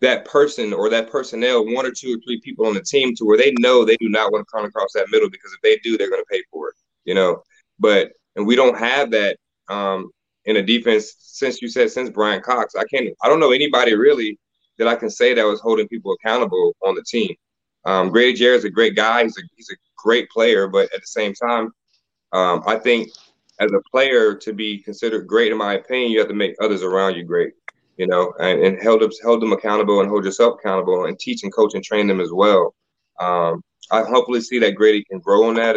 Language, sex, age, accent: English, male, 30-49, American